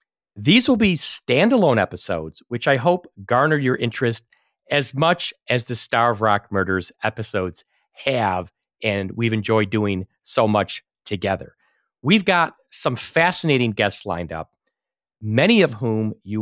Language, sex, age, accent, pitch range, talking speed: English, male, 40-59, American, 110-160 Hz, 145 wpm